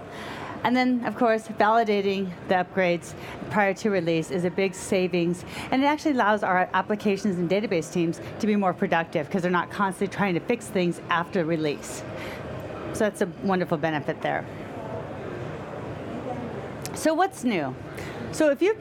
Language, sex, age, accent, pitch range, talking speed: English, female, 40-59, American, 180-230 Hz, 155 wpm